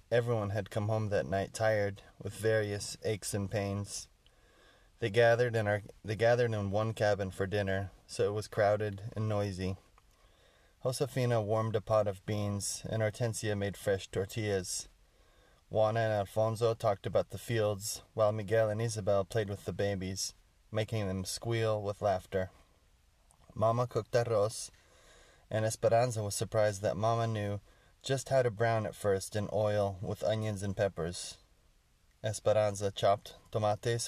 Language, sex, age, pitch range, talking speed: English, male, 20-39, 95-115 Hz, 150 wpm